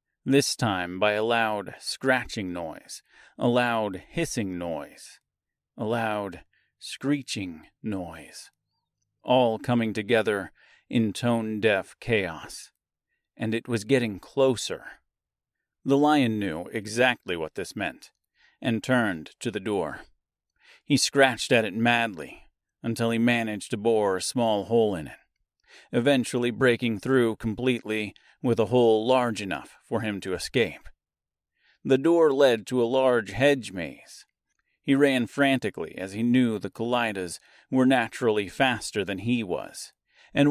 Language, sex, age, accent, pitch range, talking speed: English, male, 40-59, American, 110-135 Hz, 130 wpm